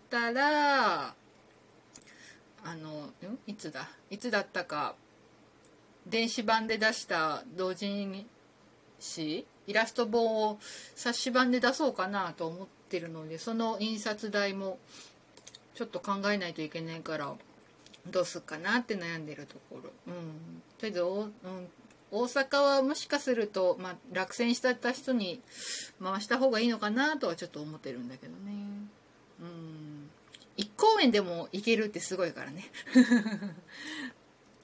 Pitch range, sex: 170-235 Hz, female